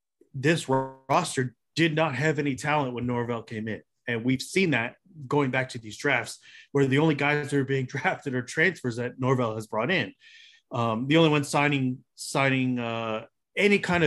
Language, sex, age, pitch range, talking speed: English, male, 30-49, 125-155 Hz, 190 wpm